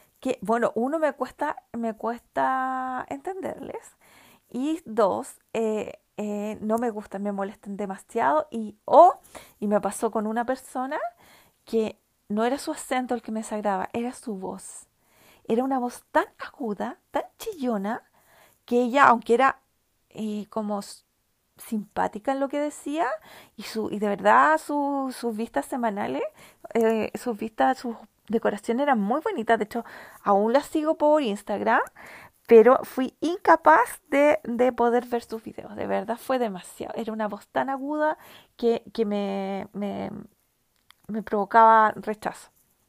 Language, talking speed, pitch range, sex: Spanish, 150 wpm, 215-265 Hz, female